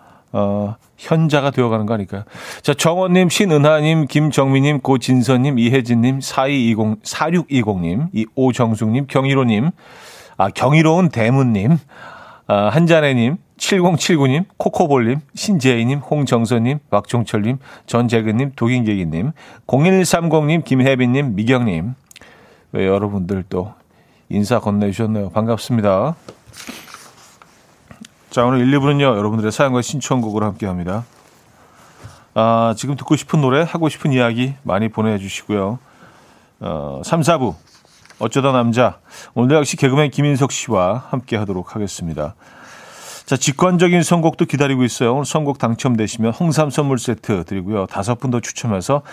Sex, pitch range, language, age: male, 110-145 Hz, Korean, 40-59